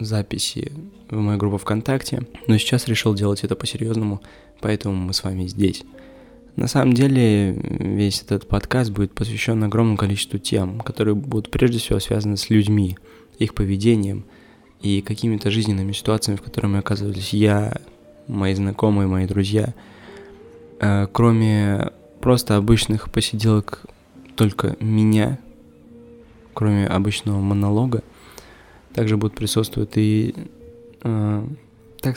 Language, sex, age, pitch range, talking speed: Russian, male, 20-39, 100-120 Hz, 120 wpm